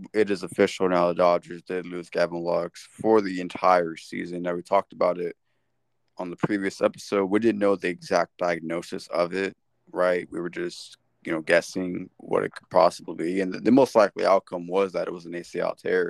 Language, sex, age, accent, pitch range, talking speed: English, male, 20-39, American, 90-105 Hz, 210 wpm